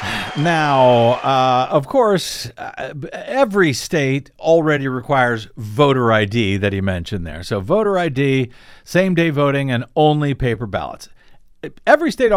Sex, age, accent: male, 50-69, American